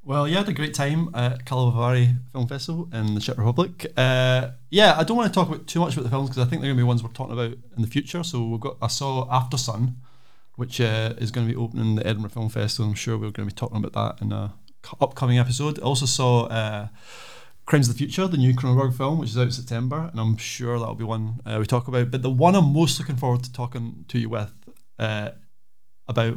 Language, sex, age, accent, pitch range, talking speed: English, male, 30-49, British, 115-135 Hz, 260 wpm